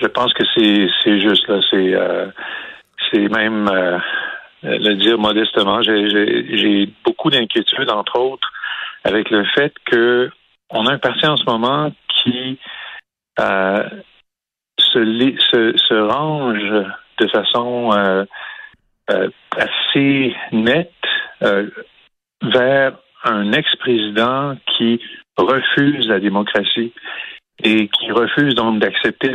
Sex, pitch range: male, 105-125 Hz